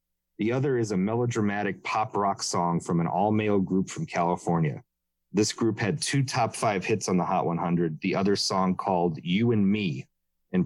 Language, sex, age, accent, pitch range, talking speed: English, male, 30-49, American, 90-120 Hz, 185 wpm